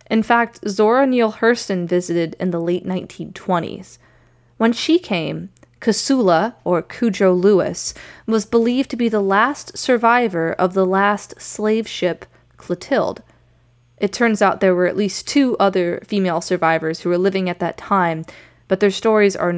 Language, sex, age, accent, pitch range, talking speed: English, female, 20-39, American, 165-220 Hz, 155 wpm